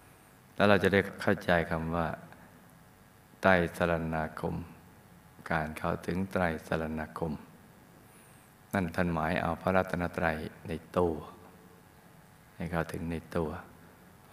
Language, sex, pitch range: Thai, male, 80-90 Hz